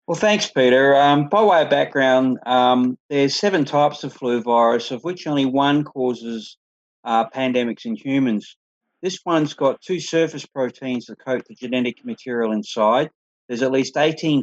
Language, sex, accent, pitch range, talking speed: English, male, Australian, 120-150 Hz, 165 wpm